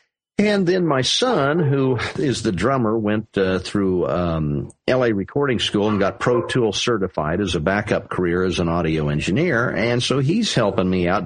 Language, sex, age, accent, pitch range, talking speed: English, male, 50-69, American, 90-105 Hz, 180 wpm